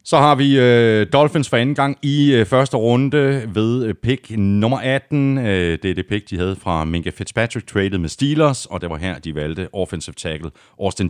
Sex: male